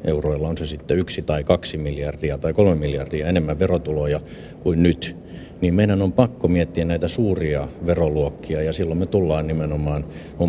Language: Finnish